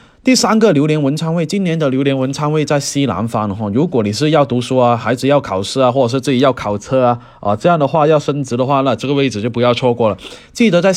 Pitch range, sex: 115-140 Hz, male